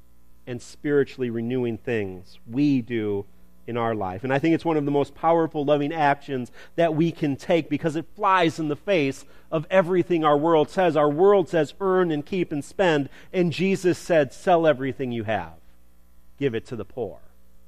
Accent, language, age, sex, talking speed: American, English, 40-59, male, 185 wpm